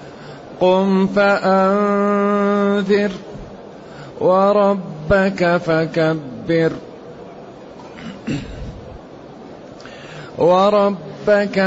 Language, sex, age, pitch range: Arabic, male, 30-49, 180-195 Hz